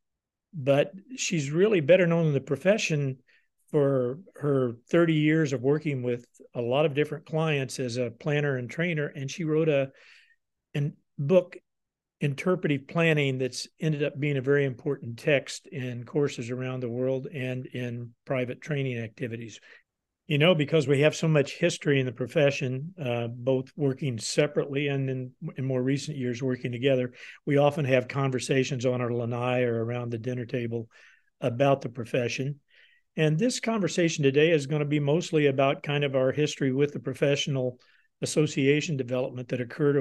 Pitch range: 125-150 Hz